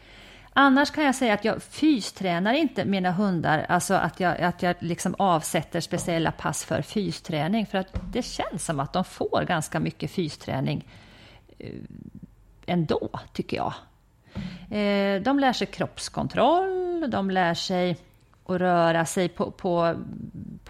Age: 40-59